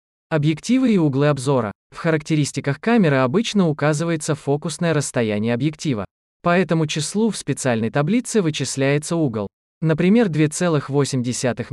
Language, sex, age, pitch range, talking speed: Russian, male, 20-39, 125-170 Hz, 115 wpm